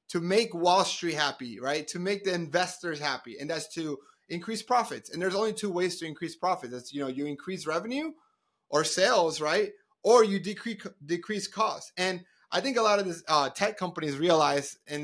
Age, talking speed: 30-49, 200 wpm